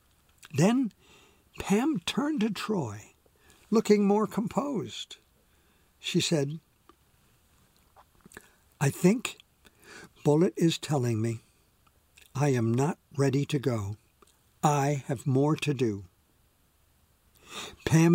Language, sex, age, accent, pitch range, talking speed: English, male, 60-79, American, 115-185 Hz, 95 wpm